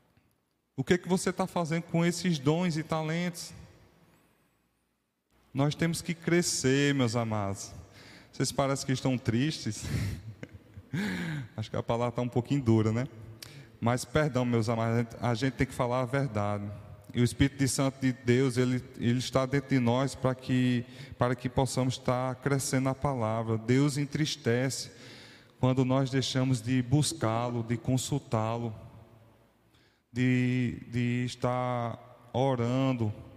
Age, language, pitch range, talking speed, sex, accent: 20-39, Portuguese, 120-140 Hz, 135 wpm, male, Brazilian